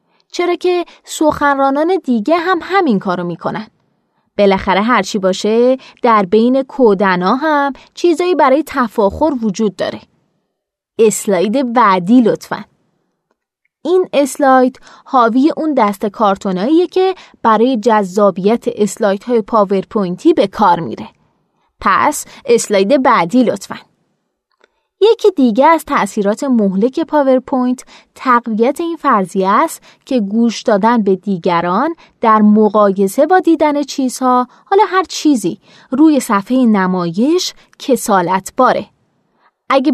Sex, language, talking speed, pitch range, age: female, Persian, 105 wpm, 210-295 Hz, 20-39